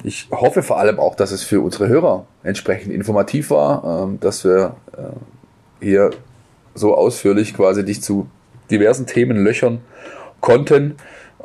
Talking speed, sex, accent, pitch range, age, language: 130 wpm, male, German, 100-125 Hz, 30-49, German